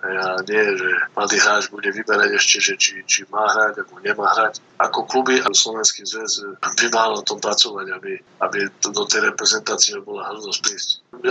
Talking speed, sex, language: 180 wpm, male, Slovak